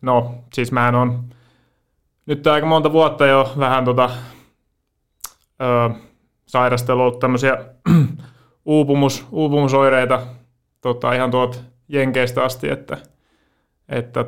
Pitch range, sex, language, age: 120-135 Hz, male, Finnish, 30-49